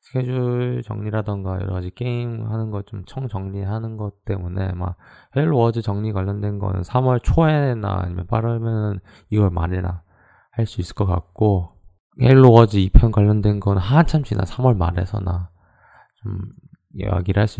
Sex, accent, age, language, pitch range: male, native, 20-39, Korean, 95-115 Hz